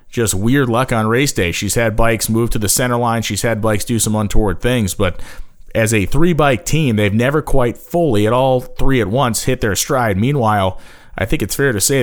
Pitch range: 105-125 Hz